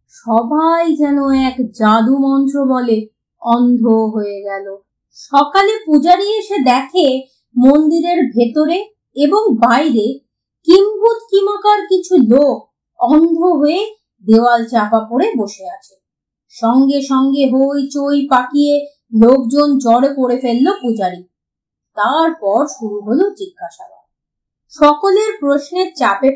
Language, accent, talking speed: Bengali, native, 100 wpm